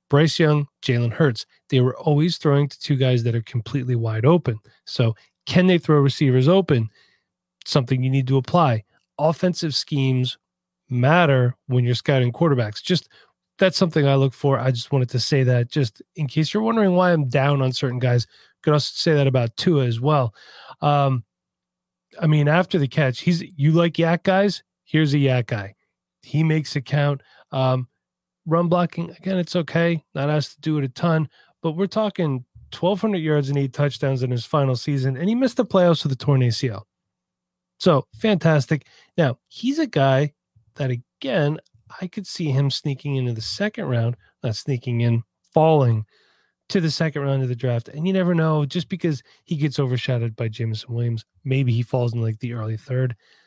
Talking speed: 185 wpm